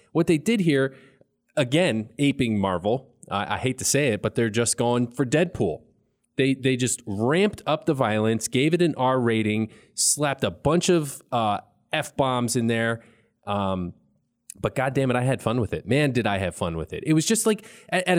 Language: English